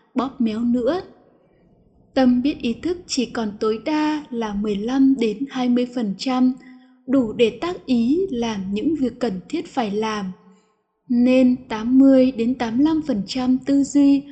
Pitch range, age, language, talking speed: 230-275 Hz, 10-29, Vietnamese, 115 wpm